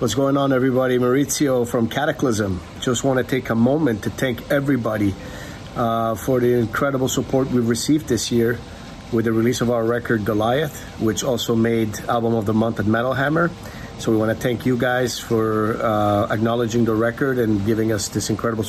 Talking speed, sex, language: 190 wpm, male, German